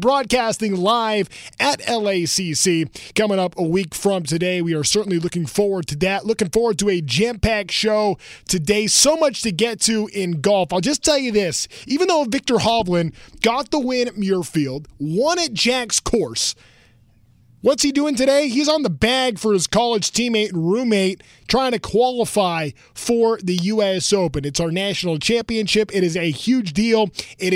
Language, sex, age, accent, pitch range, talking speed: English, male, 20-39, American, 170-225 Hz, 175 wpm